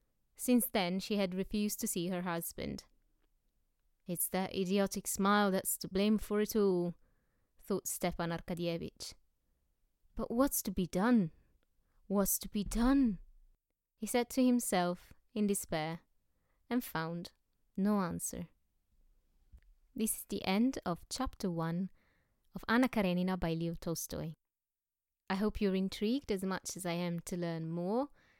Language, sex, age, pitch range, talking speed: English, female, 20-39, 175-210 Hz, 140 wpm